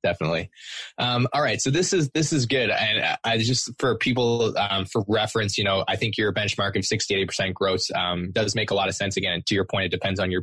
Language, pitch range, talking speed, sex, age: English, 90-105 Hz, 255 wpm, male, 20-39